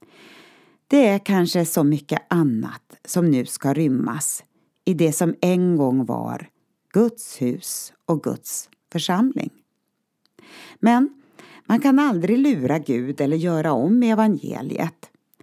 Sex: female